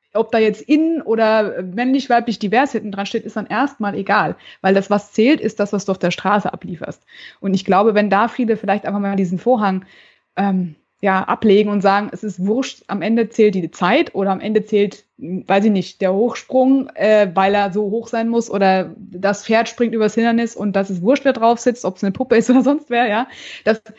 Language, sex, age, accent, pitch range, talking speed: German, female, 20-39, German, 195-230 Hz, 225 wpm